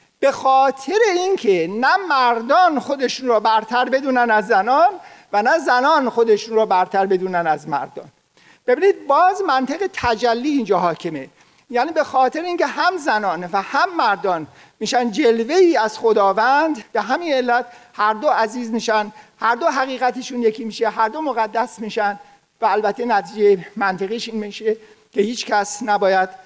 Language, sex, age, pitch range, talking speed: Persian, male, 50-69, 210-285 Hz, 150 wpm